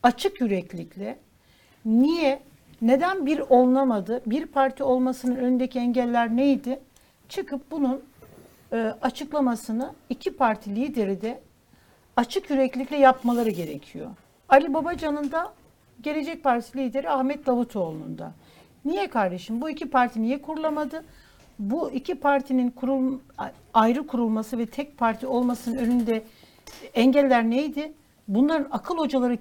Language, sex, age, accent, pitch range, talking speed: Turkish, female, 60-79, native, 230-280 Hz, 110 wpm